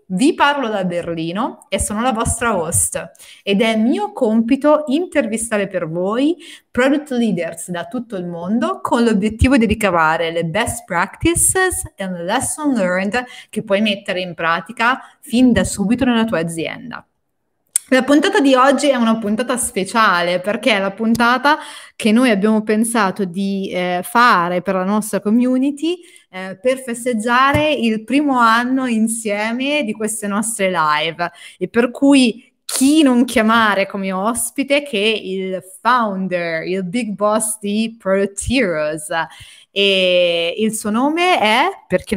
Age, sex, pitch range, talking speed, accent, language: 30-49, female, 185-260 Hz, 140 wpm, native, Italian